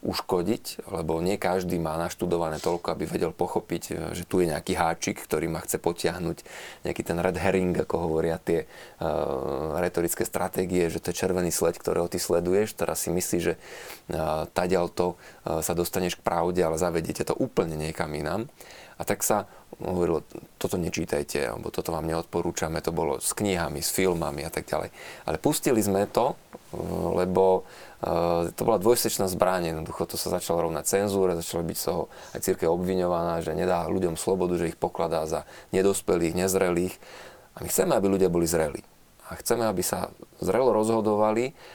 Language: Slovak